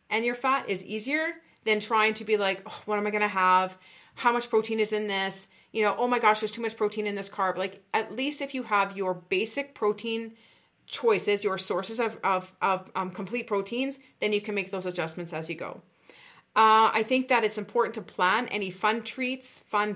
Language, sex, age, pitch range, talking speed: English, female, 30-49, 200-245 Hz, 220 wpm